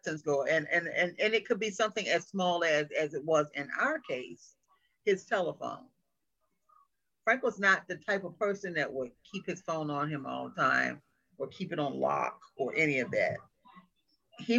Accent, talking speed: American, 185 wpm